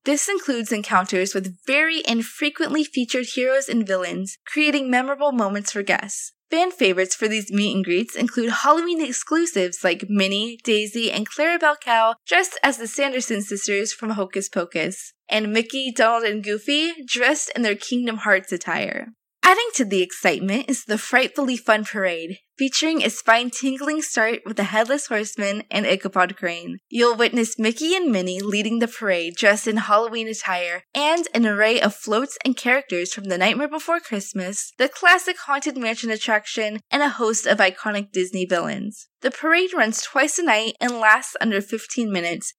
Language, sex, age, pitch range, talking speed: English, female, 20-39, 205-270 Hz, 165 wpm